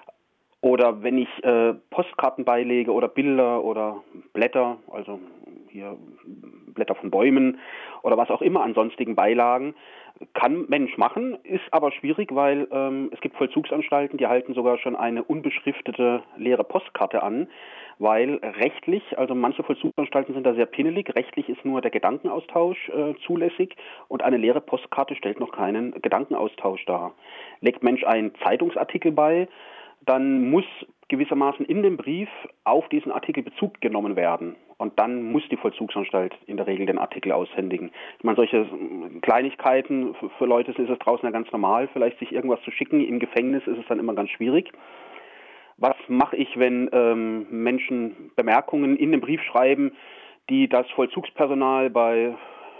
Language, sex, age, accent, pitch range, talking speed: German, male, 30-49, German, 120-170 Hz, 155 wpm